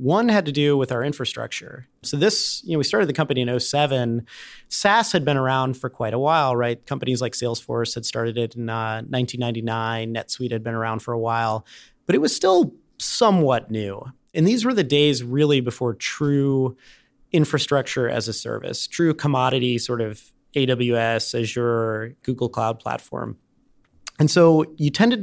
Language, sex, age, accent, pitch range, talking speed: English, male, 30-49, American, 115-150 Hz, 175 wpm